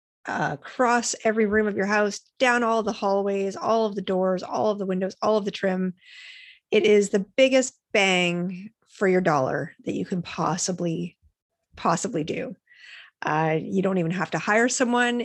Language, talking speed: English, 175 wpm